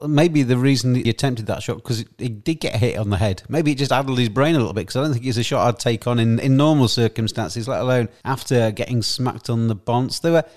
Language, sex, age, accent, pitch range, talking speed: English, male, 40-59, British, 110-135 Hz, 265 wpm